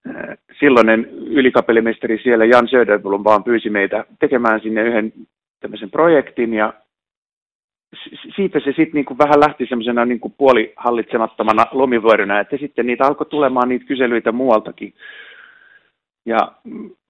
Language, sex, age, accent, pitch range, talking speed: Finnish, male, 30-49, native, 110-145 Hz, 115 wpm